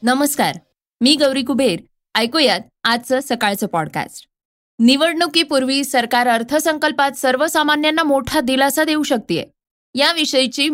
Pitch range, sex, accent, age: 205-280 Hz, female, native, 20-39